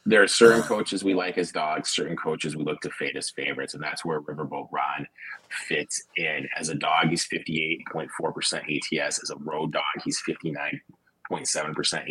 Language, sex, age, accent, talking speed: English, male, 30-49, American, 175 wpm